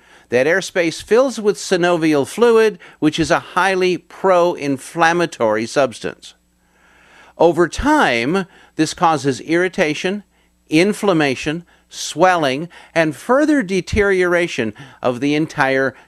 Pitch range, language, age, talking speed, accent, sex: 130-180 Hz, English, 50-69, 95 wpm, American, male